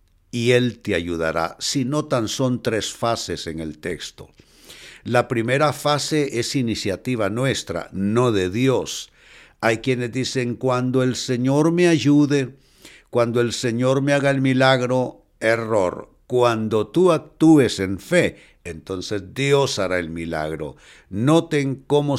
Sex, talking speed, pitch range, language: male, 135 wpm, 105-135 Hz, Spanish